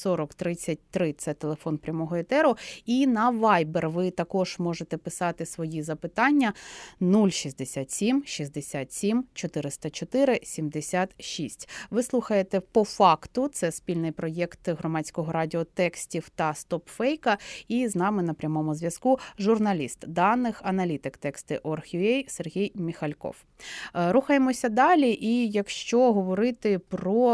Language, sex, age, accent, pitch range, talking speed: Ukrainian, female, 30-49, native, 165-240 Hz, 105 wpm